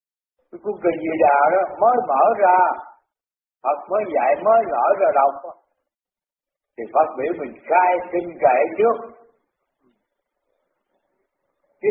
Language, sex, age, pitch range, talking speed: Vietnamese, male, 60-79, 155-235 Hz, 120 wpm